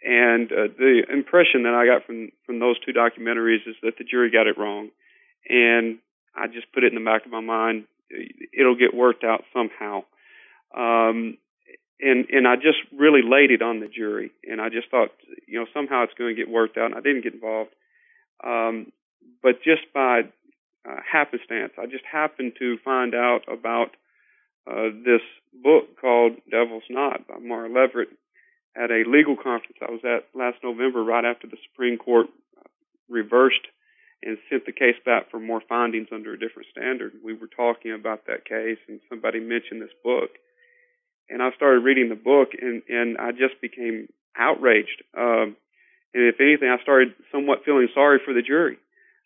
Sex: male